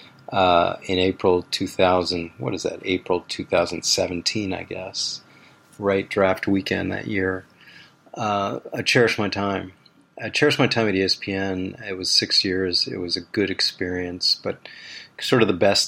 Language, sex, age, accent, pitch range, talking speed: English, male, 40-59, American, 90-105 Hz, 155 wpm